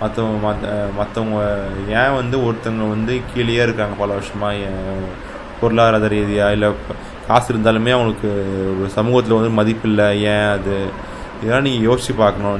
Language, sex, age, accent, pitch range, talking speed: Tamil, male, 20-39, native, 100-115 Hz, 135 wpm